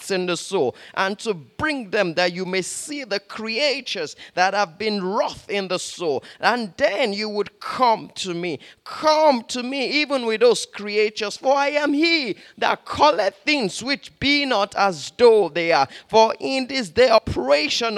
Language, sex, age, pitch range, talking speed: English, male, 30-49, 200-275 Hz, 175 wpm